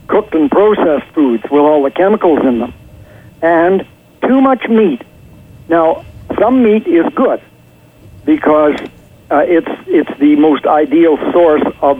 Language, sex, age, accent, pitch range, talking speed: English, male, 60-79, American, 145-185 Hz, 140 wpm